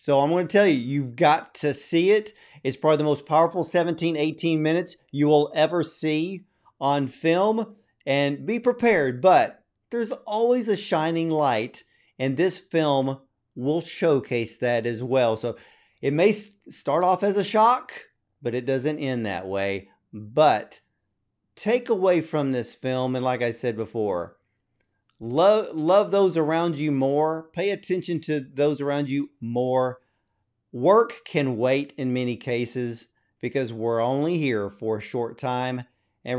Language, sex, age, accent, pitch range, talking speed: English, male, 40-59, American, 125-175 Hz, 155 wpm